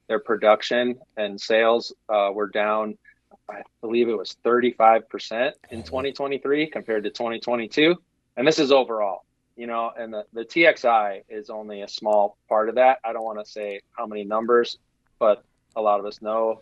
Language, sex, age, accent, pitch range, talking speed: English, male, 30-49, American, 105-125 Hz, 175 wpm